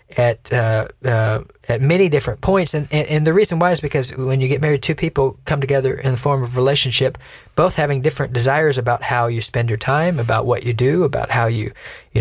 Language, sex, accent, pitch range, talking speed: English, male, American, 115-140 Hz, 225 wpm